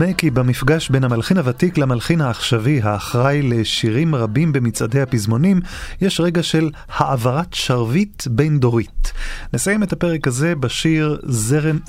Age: 30-49